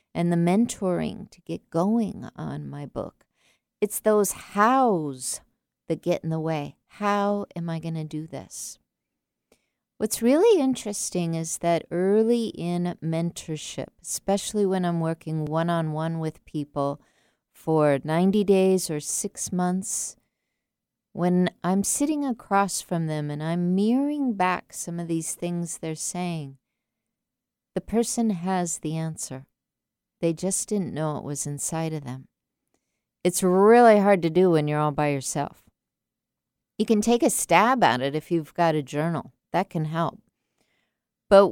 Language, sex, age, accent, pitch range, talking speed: English, female, 50-69, American, 160-205 Hz, 150 wpm